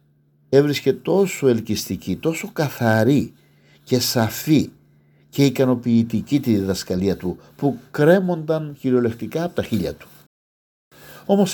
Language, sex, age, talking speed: Greek, male, 60-79, 105 wpm